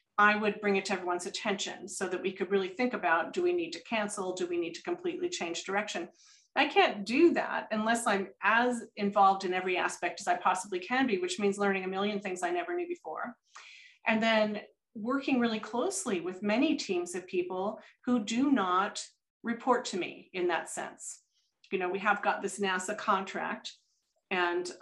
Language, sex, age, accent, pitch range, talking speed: English, female, 30-49, American, 190-235 Hz, 195 wpm